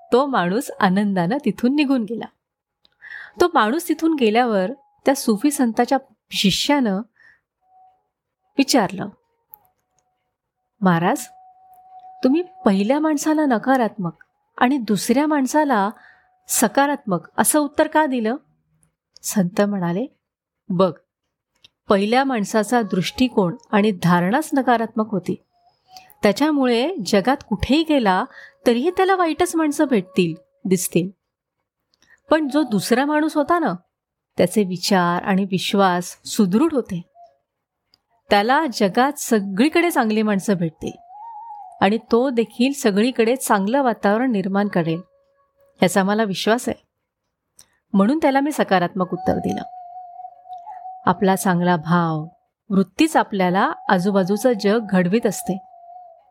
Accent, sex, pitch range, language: native, female, 195-295 Hz, Marathi